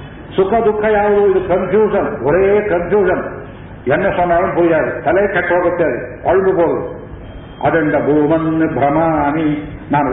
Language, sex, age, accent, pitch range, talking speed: Kannada, male, 50-69, native, 150-185 Hz, 100 wpm